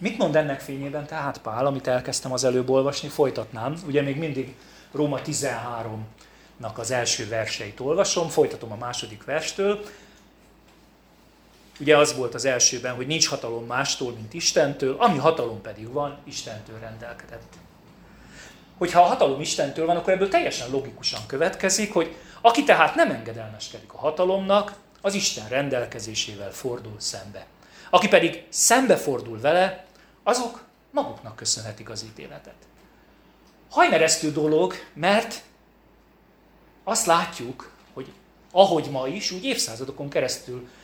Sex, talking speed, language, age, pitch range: male, 125 wpm, Hungarian, 40-59, 120-185 Hz